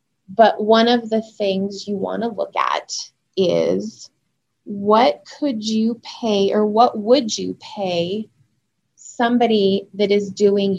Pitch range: 175-210 Hz